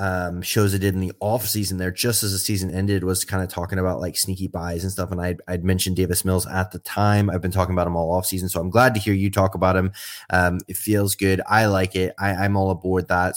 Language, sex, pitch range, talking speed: English, male, 90-105 Hz, 275 wpm